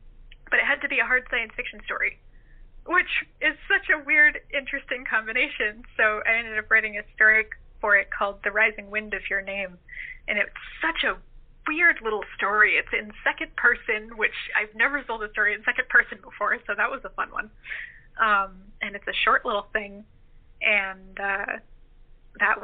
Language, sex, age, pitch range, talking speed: English, female, 20-39, 195-230 Hz, 185 wpm